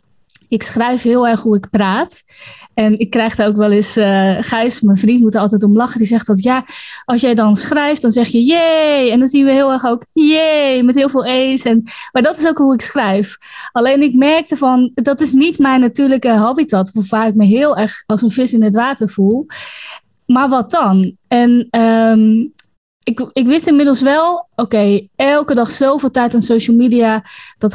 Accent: Dutch